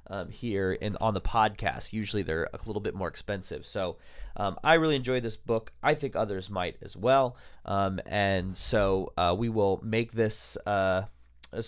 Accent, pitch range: American, 100-130 Hz